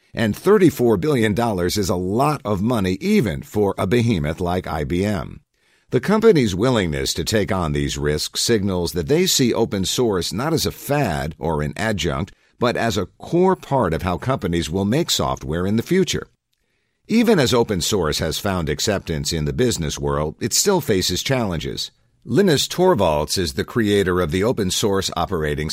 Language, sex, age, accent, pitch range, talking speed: English, male, 50-69, American, 85-125 Hz, 175 wpm